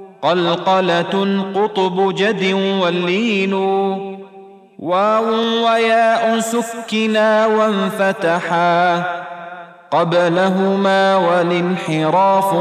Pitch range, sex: 155-195 Hz, male